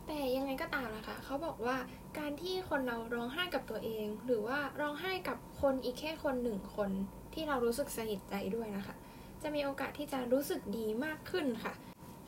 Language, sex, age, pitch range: Thai, female, 10-29, 220-285 Hz